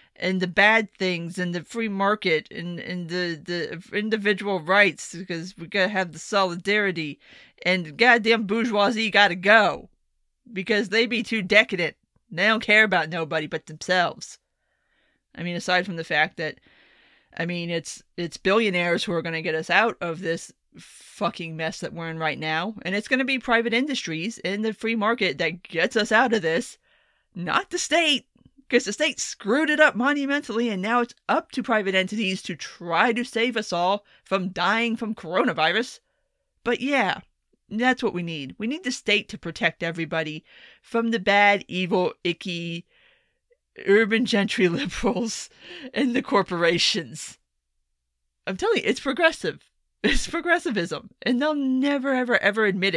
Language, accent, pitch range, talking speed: English, American, 175-235 Hz, 165 wpm